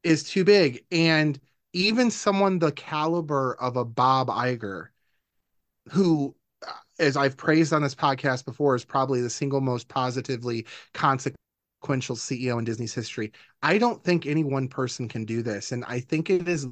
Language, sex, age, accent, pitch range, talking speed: English, male, 30-49, American, 120-140 Hz, 160 wpm